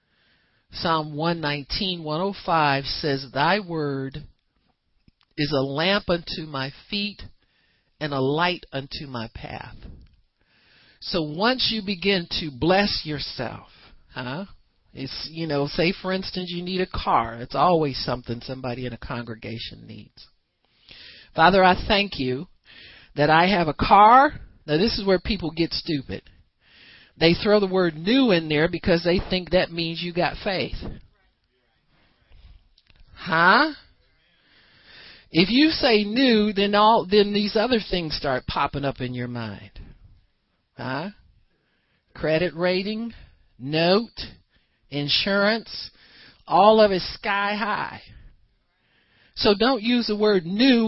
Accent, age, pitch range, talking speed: American, 50-69, 135-200 Hz, 125 wpm